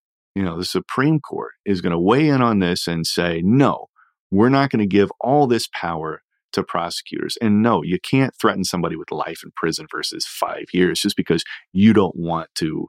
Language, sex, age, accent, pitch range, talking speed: English, male, 40-59, American, 90-145 Hz, 205 wpm